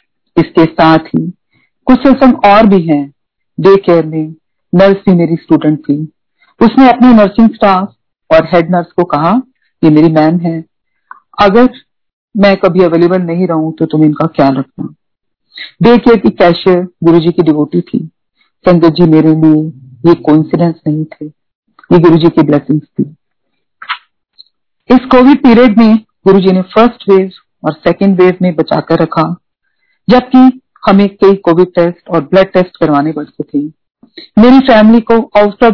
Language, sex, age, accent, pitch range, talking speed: Hindi, female, 50-69, native, 160-200 Hz, 90 wpm